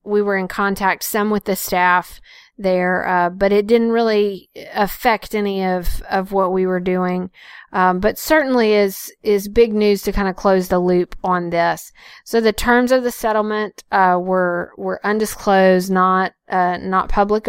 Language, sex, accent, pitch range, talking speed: English, female, American, 180-205 Hz, 175 wpm